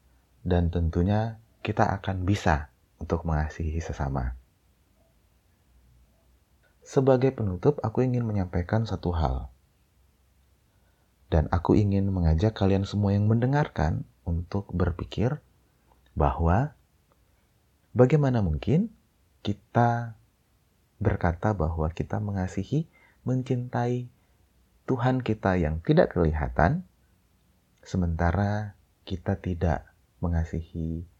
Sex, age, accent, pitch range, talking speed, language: male, 30-49, native, 80-110 Hz, 85 wpm, Indonesian